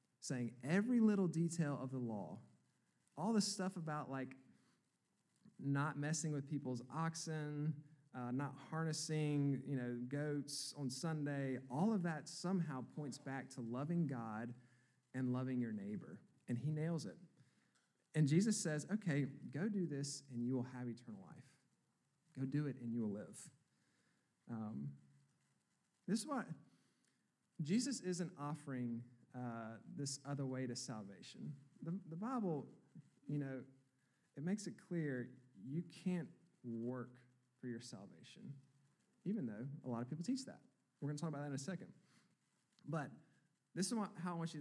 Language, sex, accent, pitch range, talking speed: English, male, American, 130-170 Hz, 155 wpm